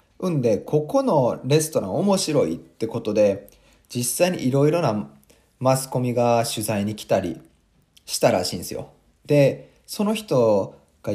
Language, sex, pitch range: Japanese, male, 105-170 Hz